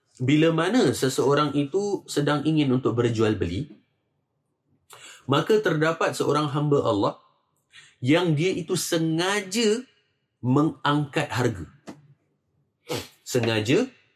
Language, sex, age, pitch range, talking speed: Malay, male, 30-49, 110-145 Hz, 85 wpm